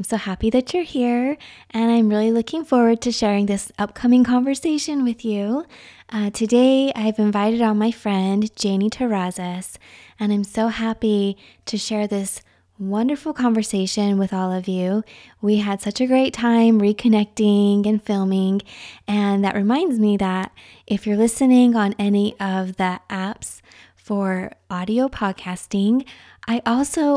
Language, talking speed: English, 150 wpm